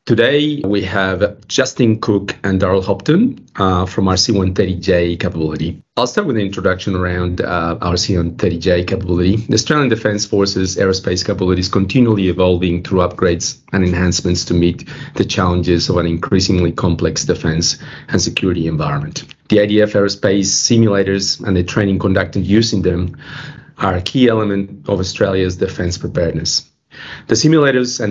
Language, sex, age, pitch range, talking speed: English, male, 40-59, 90-105 Hz, 145 wpm